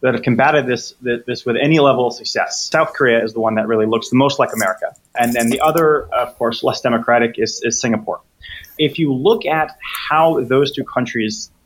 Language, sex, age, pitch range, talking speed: English, male, 30-49, 115-140 Hz, 210 wpm